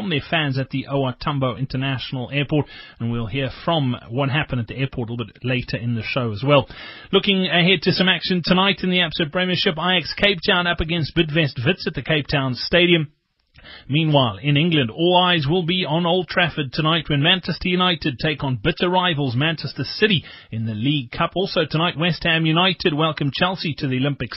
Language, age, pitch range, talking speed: English, 30-49, 135-175 Hz, 200 wpm